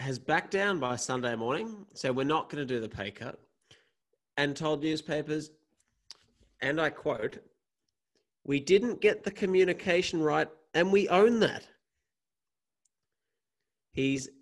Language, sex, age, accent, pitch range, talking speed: English, male, 30-49, Australian, 135-200 Hz, 130 wpm